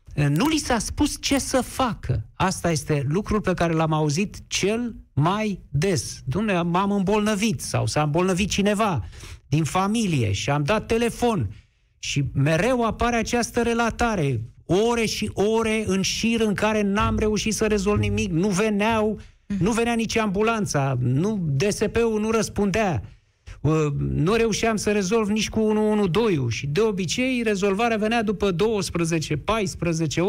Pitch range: 135-215 Hz